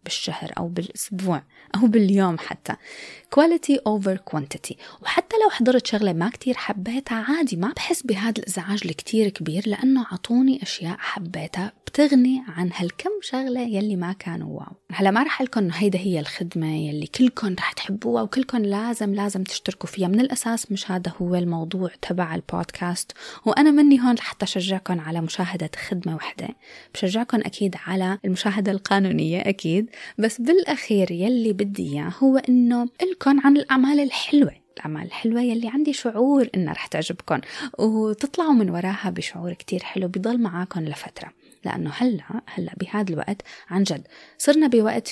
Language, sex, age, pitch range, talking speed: Arabic, female, 20-39, 185-245 Hz, 150 wpm